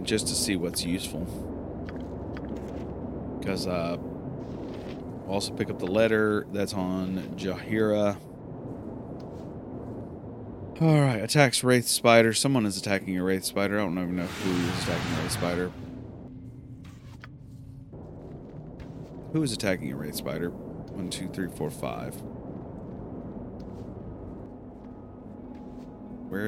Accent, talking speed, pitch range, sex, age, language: American, 105 wpm, 95-125 Hz, male, 30-49, English